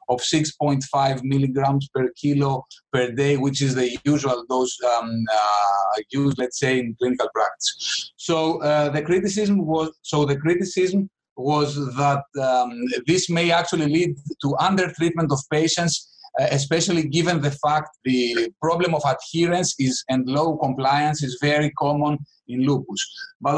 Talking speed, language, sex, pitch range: 150 wpm, English, male, 135-165 Hz